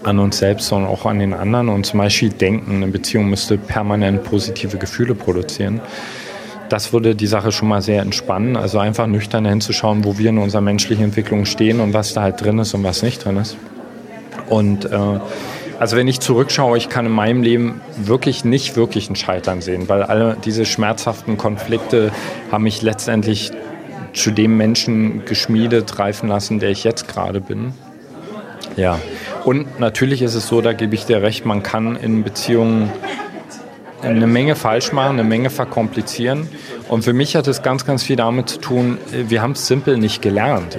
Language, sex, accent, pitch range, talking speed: German, male, German, 105-120 Hz, 180 wpm